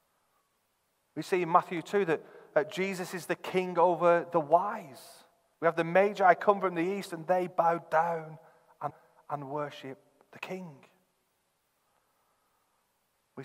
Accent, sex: British, male